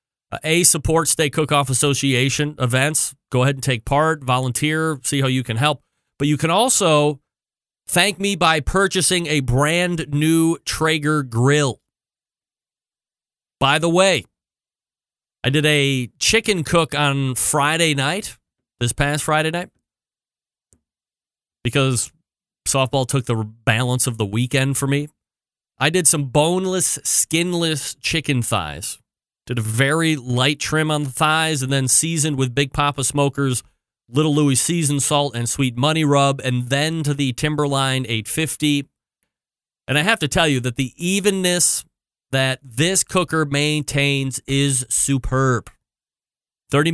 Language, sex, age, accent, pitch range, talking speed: English, male, 30-49, American, 130-155 Hz, 135 wpm